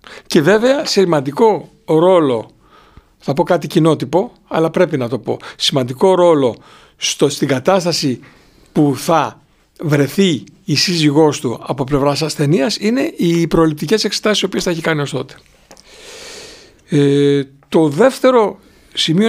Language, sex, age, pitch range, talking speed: Greek, male, 60-79, 145-220 Hz, 130 wpm